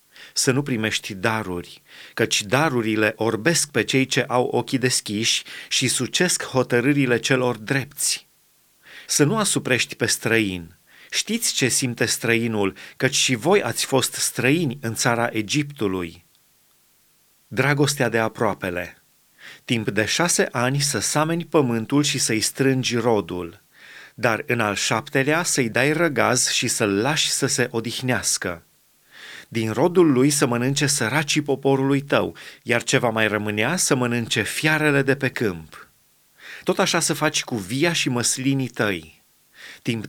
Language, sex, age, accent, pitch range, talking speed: Romanian, male, 30-49, native, 115-150 Hz, 140 wpm